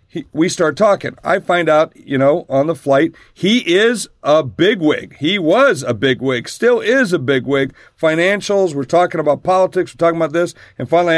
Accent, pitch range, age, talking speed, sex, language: American, 140-190 Hz, 50-69, 190 wpm, male, English